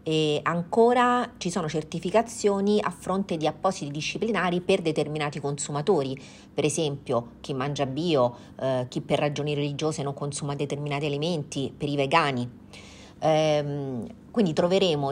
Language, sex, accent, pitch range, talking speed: Italian, female, native, 140-185 Hz, 130 wpm